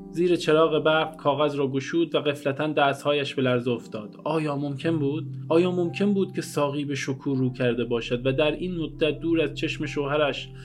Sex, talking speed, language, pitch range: male, 180 wpm, Persian, 135-160 Hz